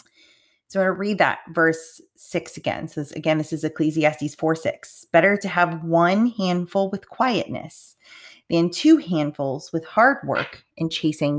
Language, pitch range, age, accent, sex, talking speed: English, 145-190 Hz, 20-39, American, female, 165 wpm